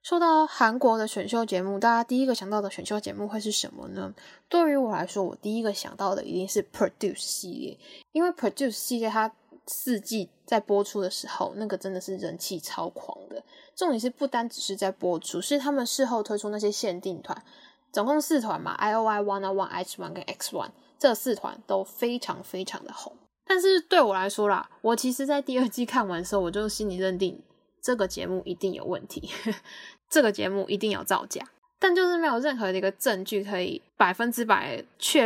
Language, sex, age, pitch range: Chinese, female, 10-29, 195-255 Hz